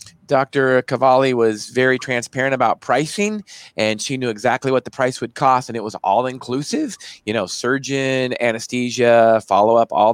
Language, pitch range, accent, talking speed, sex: English, 110-135 Hz, American, 160 wpm, male